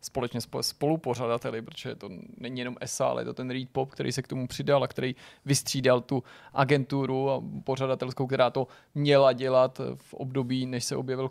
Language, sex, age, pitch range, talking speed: Czech, male, 20-39, 125-140 Hz, 165 wpm